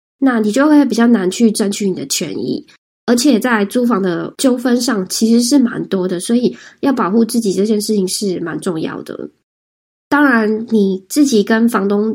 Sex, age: female, 20-39